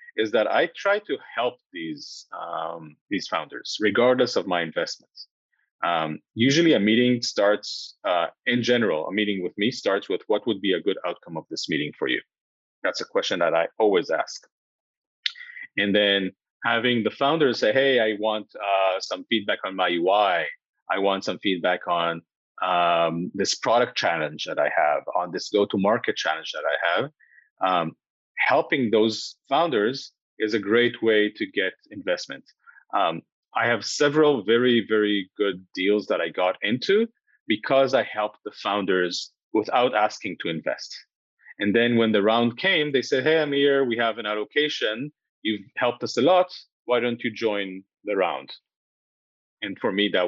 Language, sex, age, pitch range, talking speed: Hebrew, male, 30-49, 100-145 Hz, 175 wpm